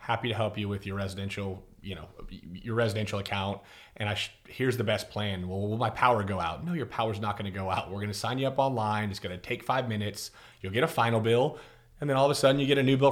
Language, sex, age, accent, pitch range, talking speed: English, male, 30-49, American, 105-125 Hz, 285 wpm